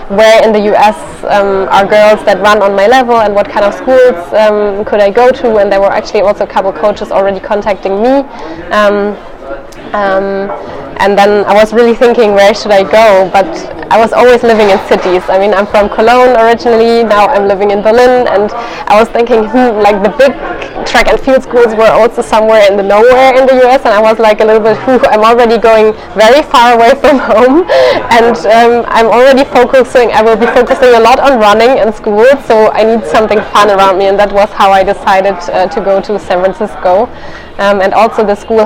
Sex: female